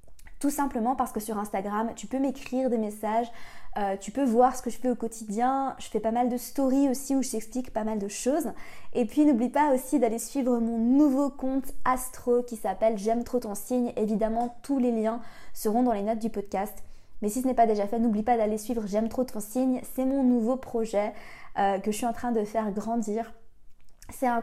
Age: 20-39